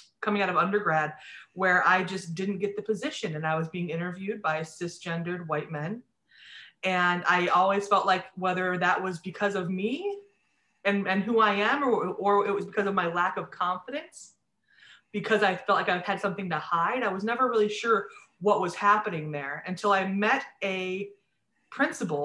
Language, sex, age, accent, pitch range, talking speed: English, female, 20-39, American, 170-210 Hz, 185 wpm